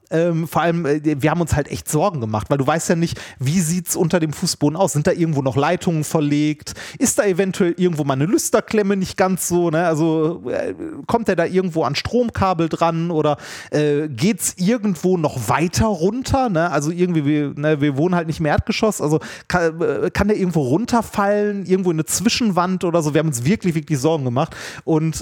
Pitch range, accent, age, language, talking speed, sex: 155-200 Hz, German, 30-49, German, 205 wpm, male